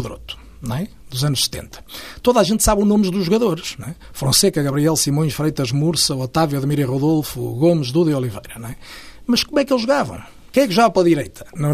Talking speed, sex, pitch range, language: 215 wpm, male, 145-195 Hz, Portuguese